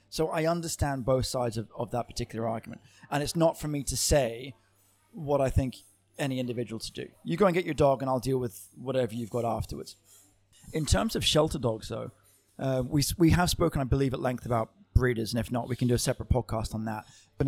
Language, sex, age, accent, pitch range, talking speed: English, male, 30-49, British, 115-145 Hz, 230 wpm